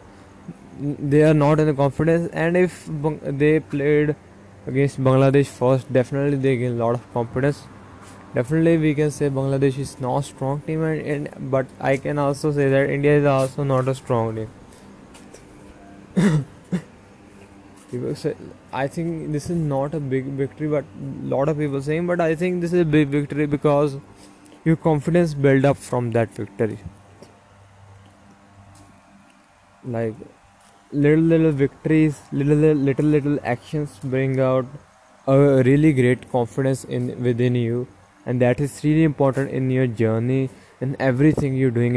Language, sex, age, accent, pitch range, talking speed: English, male, 20-39, Indian, 100-145 Hz, 150 wpm